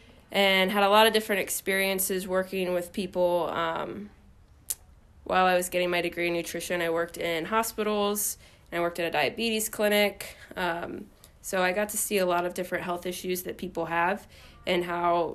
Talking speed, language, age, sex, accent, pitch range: 185 wpm, English, 20-39, female, American, 175-200 Hz